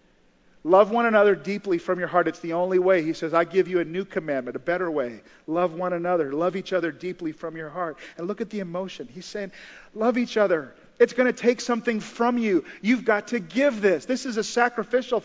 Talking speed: 230 wpm